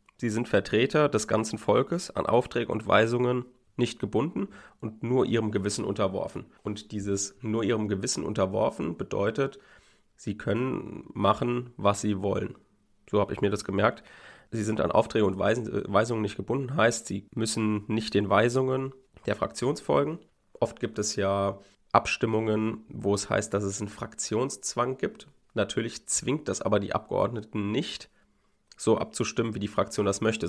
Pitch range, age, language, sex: 100-115 Hz, 30-49, German, male